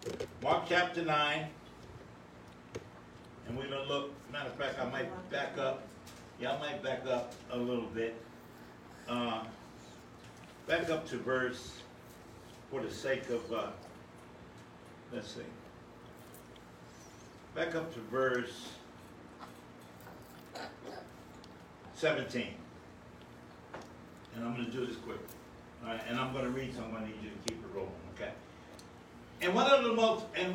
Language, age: English, 60-79